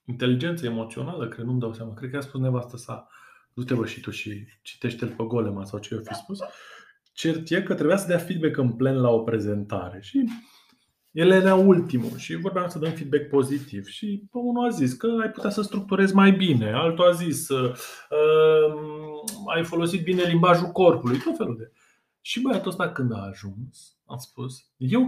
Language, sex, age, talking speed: Romanian, male, 20-39, 185 wpm